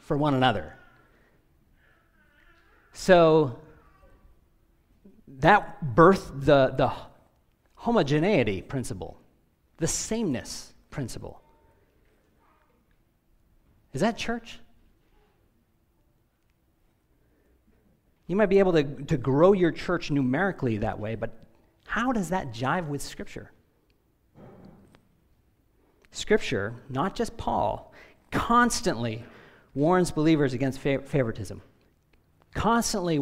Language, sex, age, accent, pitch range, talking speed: English, male, 40-59, American, 110-165 Hz, 80 wpm